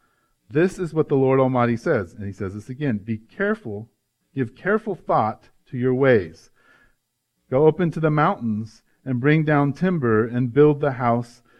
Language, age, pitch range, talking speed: English, 40-59, 120-150 Hz, 170 wpm